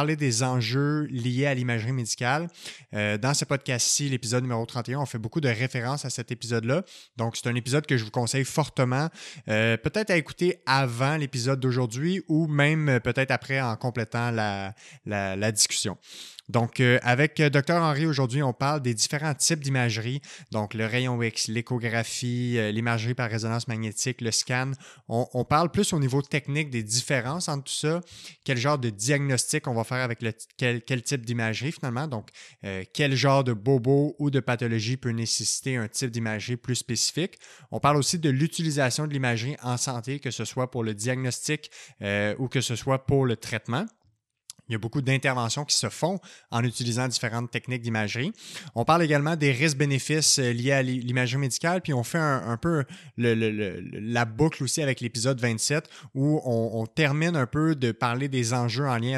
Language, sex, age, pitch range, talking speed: French, male, 20-39, 120-145 Hz, 180 wpm